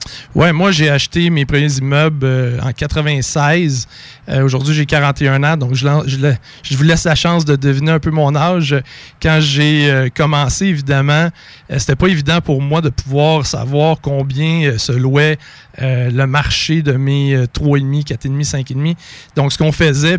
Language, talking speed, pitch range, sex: French, 170 wpm, 135-155 Hz, male